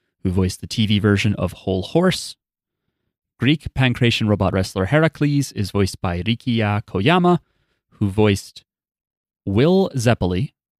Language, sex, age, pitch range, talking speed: English, male, 30-49, 100-140 Hz, 120 wpm